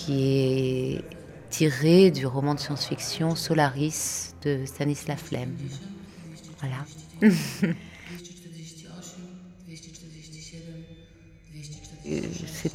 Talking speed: 60 wpm